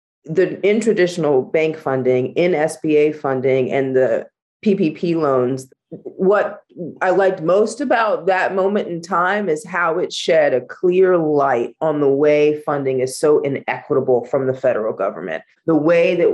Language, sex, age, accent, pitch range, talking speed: English, female, 30-49, American, 140-195 Hz, 155 wpm